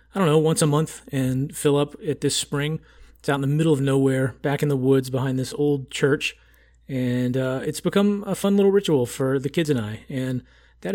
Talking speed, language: 230 wpm, English